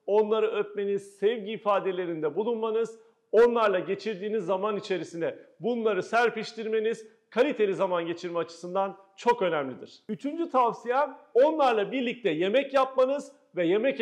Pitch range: 190-260 Hz